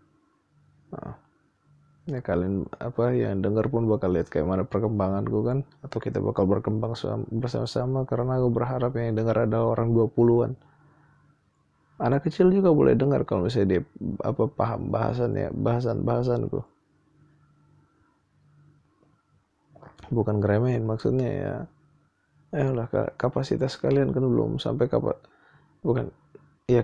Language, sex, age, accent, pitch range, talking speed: Indonesian, male, 20-39, native, 115-150 Hz, 125 wpm